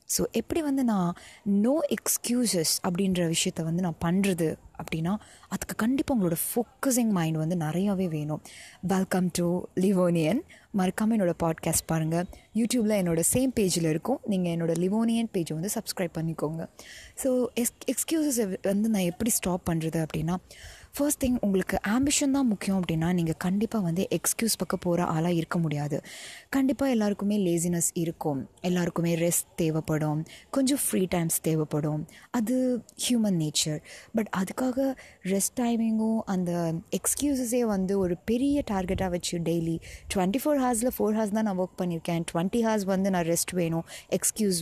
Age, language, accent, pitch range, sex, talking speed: 20-39, Tamil, native, 170-225 Hz, female, 140 wpm